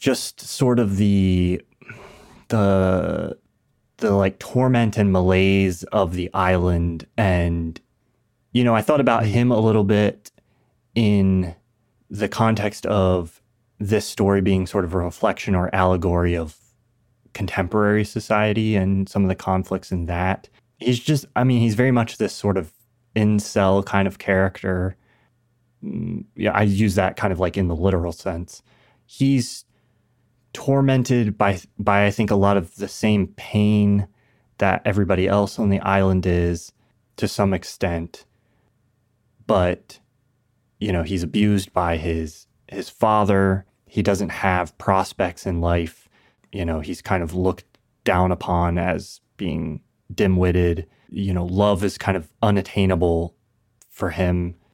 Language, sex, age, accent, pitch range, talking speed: English, male, 30-49, American, 95-115 Hz, 140 wpm